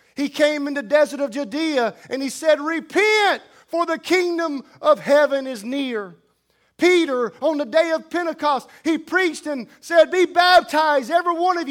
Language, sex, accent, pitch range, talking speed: English, male, American, 270-330 Hz, 170 wpm